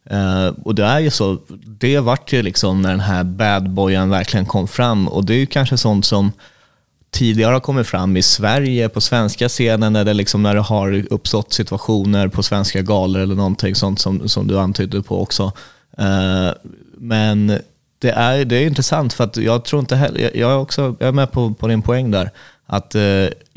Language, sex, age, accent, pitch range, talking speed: Swedish, male, 30-49, native, 95-120 Hz, 205 wpm